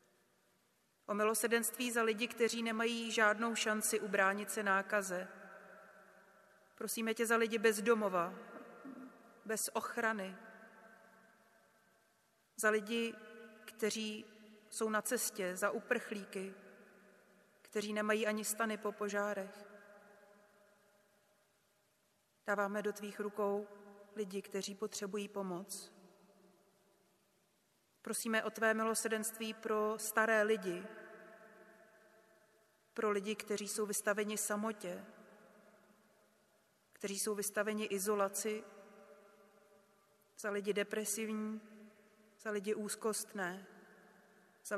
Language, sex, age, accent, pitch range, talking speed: Czech, female, 30-49, native, 200-220 Hz, 85 wpm